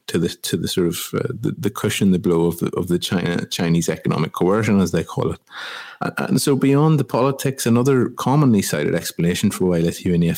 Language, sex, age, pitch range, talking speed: English, male, 30-49, 90-120 Hz, 215 wpm